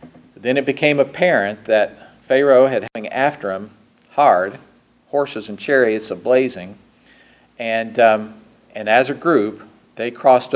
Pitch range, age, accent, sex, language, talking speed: 110-130 Hz, 50-69, American, male, English, 130 wpm